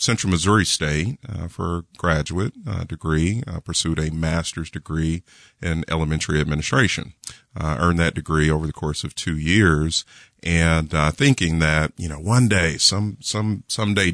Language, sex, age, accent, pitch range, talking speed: English, male, 40-59, American, 80-90 Hz, 155 wpm